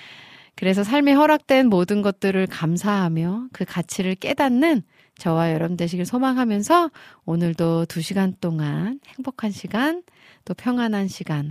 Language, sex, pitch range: Korean, female, 165-240 Hz